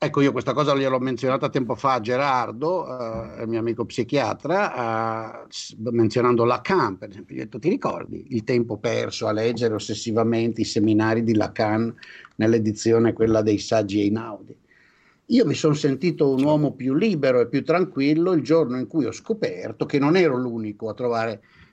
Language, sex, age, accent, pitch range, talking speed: Italian, male, 50-69, native, 115-140 Hz, 180 wpm